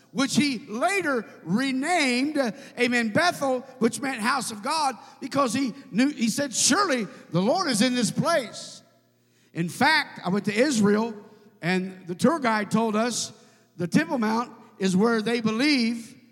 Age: 50-69